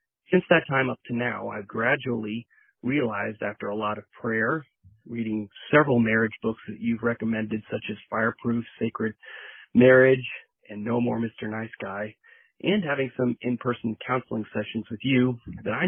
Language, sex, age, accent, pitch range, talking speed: English, male, 30-49, American, 110-125 Hz, 160 wpm